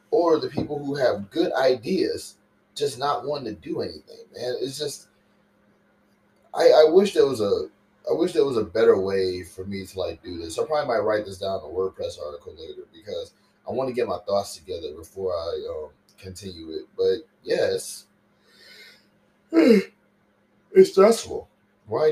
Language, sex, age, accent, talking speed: English, male, 20-39, American, 175 wpm